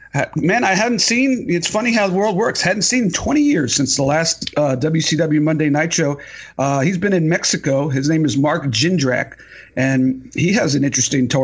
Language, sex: English, male